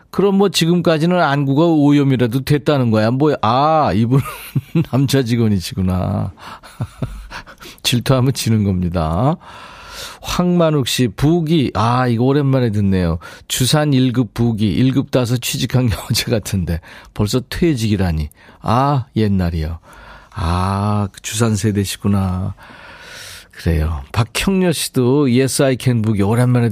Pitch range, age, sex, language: 105-155 Hz, 40-59, male, Korean